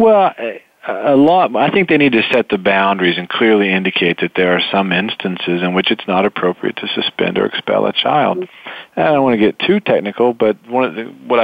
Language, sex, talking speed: English, male, 225 wpm